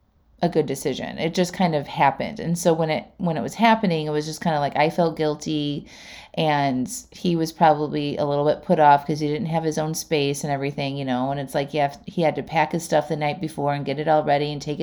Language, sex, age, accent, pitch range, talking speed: English, female, 30-49, American, 150-200 Hz, 265 wpm